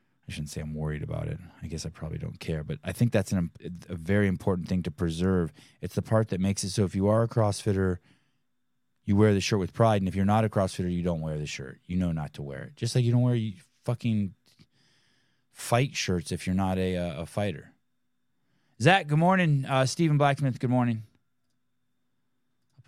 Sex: male